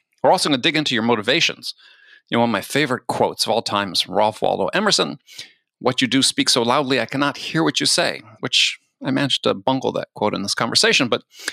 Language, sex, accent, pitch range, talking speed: English, male, American, 115-160 Hz, 240 wpm